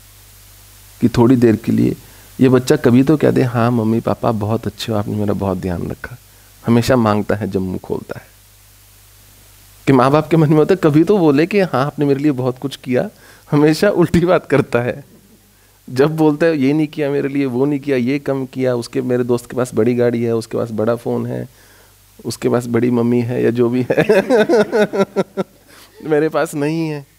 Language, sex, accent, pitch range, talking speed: English, male, Indian, 105-155 Hz, 140 wpm